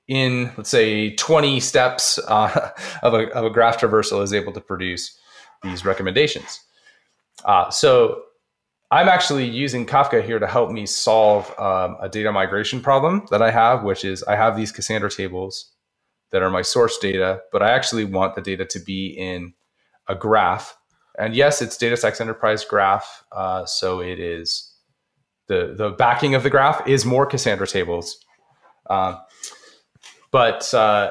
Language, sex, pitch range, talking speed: English, male, 95-135 Hz, 160 wpm